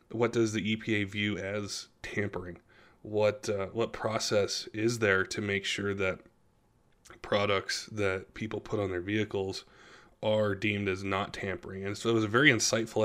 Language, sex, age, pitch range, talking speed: English, male, 20-39, 100-115 Hz, 165 wpm